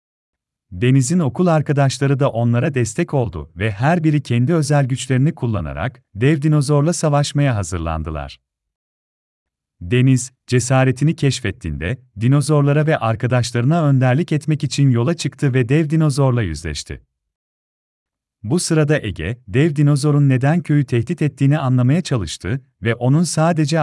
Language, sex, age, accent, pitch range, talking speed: Turkish, male, 40-59, native, 105-145 Hz, 120 wpm